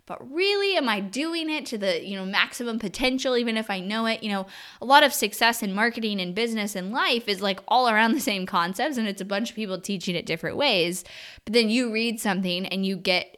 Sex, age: female, 10-29